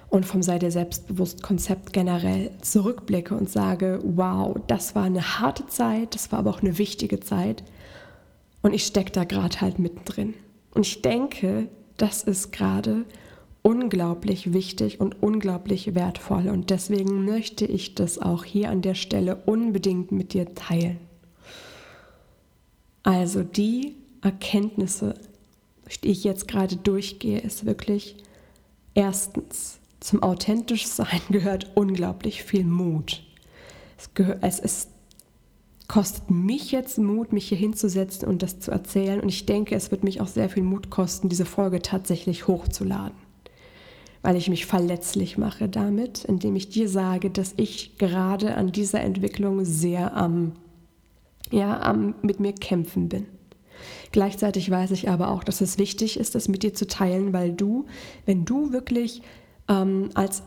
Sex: female